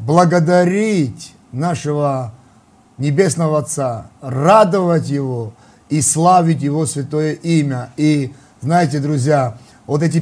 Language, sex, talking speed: Russian, male, 95 wpm